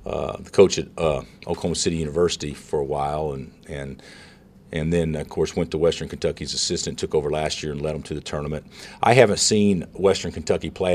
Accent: American